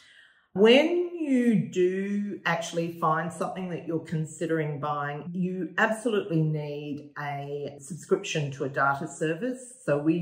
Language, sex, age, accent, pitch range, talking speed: English, female, 40-59, Australian, 155-190 Hz, 125 wpm